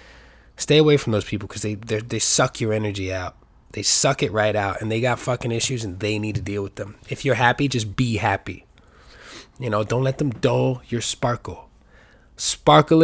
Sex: male